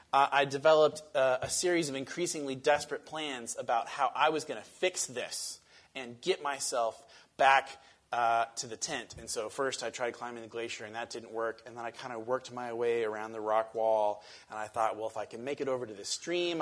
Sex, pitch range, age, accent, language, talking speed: male, 115-145 Hz, 30-49, American, English, 230 wpm